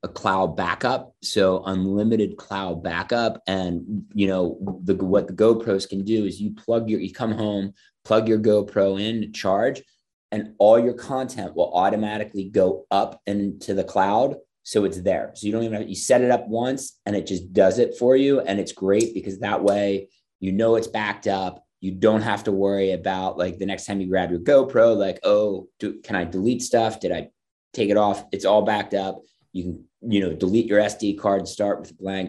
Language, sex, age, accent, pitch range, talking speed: English, male, 30-49, American, 95-110 Hz, 210 wpm